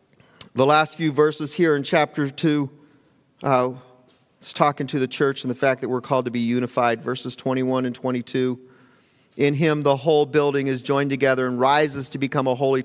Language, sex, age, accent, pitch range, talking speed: English, male, 40-59, American, 135-210 Hz, 190 wpm